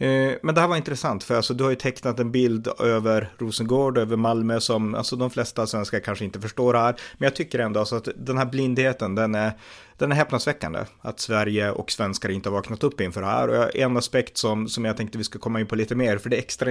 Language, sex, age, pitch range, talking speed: Swedish, male, 30-49, 105-125 Hz, 250 wpm